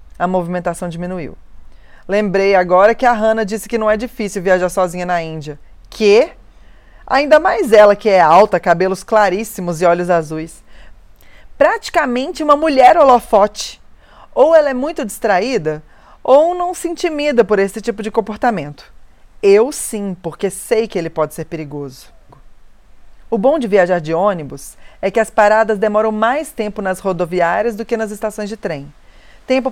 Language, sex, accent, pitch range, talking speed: Portuguese, female, Brazilian, 180-230 Hz, 160 wpm